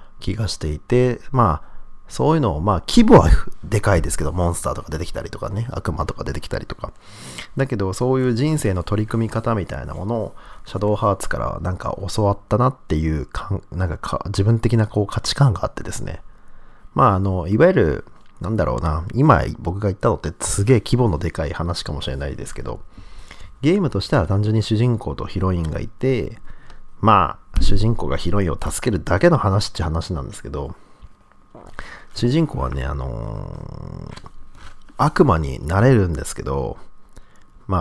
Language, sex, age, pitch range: Japanese, male, 40-59, 80-115 Hz